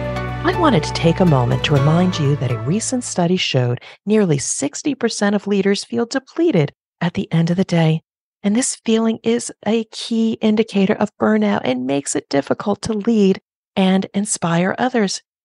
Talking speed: 170 wpm